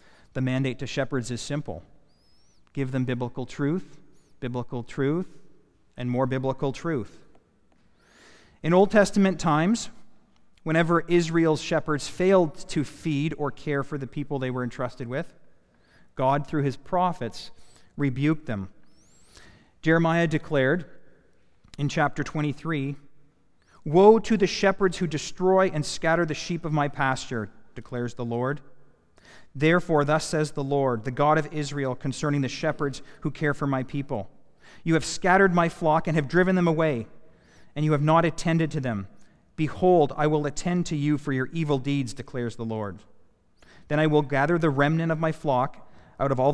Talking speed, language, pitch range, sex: 155 wpm, English, 130-160 Hz, male